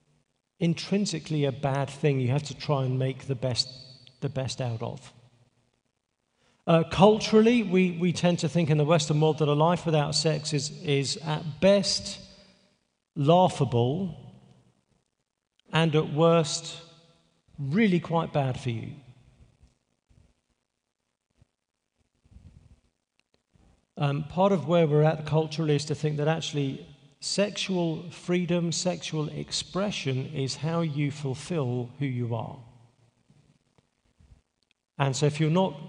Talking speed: 125 wpm